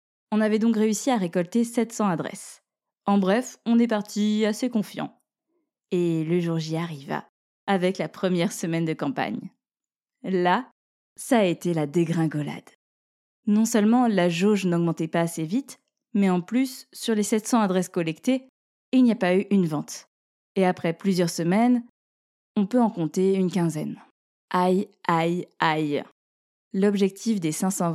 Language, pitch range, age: French, 175-230 Hz, 20-39